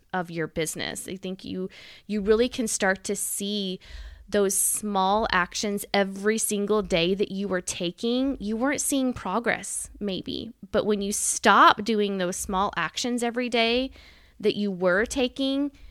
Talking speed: 155 wpm